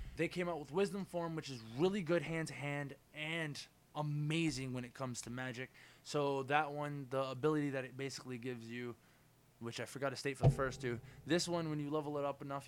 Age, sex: 20-39, male